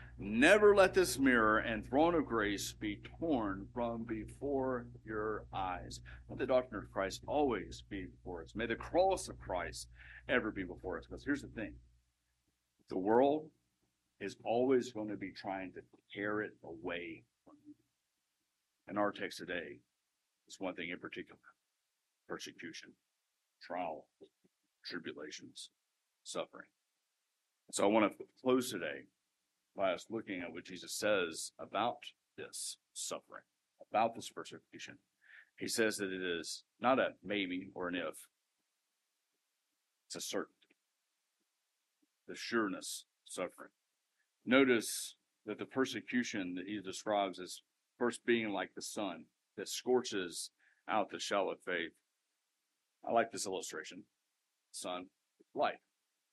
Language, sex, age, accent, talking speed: English, male, 50-69, American, 135 wpm